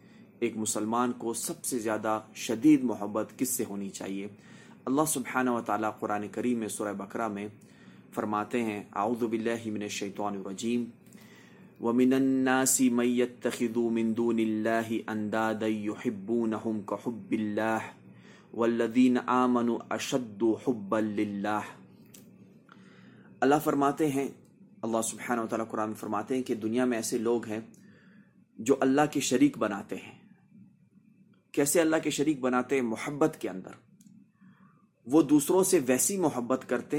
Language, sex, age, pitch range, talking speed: Urdu, male, 30-49, 110-150 Hz, 135 wpm